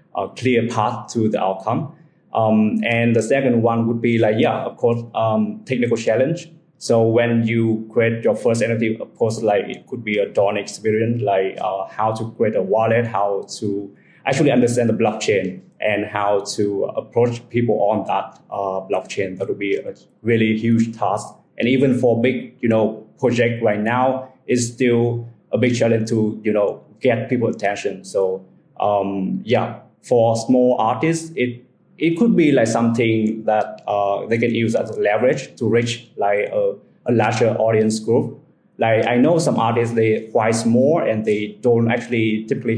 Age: 20-39